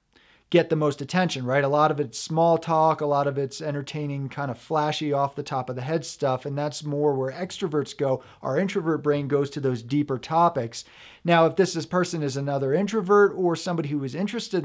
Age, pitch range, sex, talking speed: 40-59, 140-170 Hz, male, 215 wpm